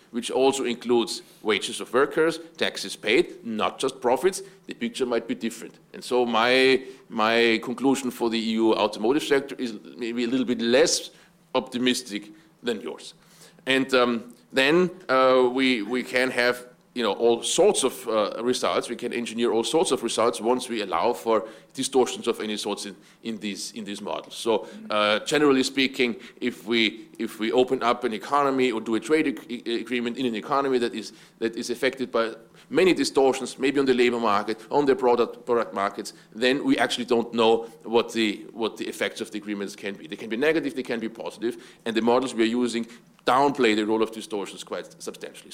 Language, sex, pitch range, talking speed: English, male, 115-135 Hz, 190 wpm